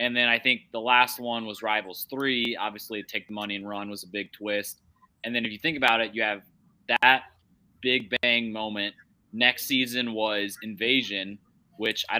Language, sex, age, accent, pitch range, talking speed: English, male, 20-39, American, 105-125 Hz, 190 wpm